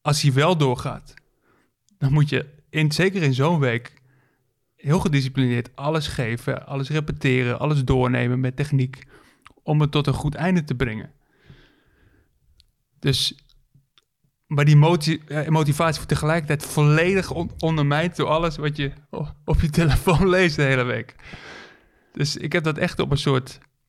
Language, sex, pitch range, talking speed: Dutch, male, 130-150 Hz, 150 wpm